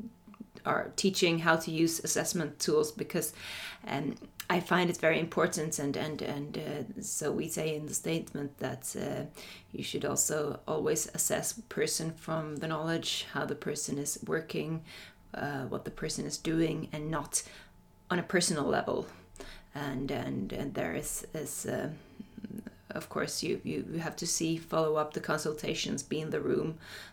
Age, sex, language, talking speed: 30-49, female, Finnish, 165 wpm